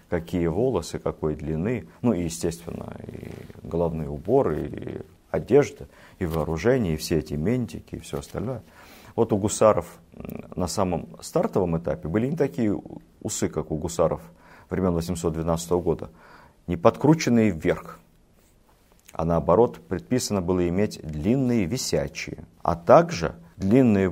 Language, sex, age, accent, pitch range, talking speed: Russian, male, 50-69, native, 85-110 Hz, 125 wpm